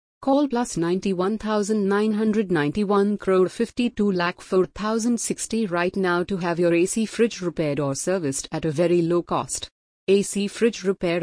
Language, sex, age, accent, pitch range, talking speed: English, female, 30-49, Indian, 165-210 Hz, 135 wpm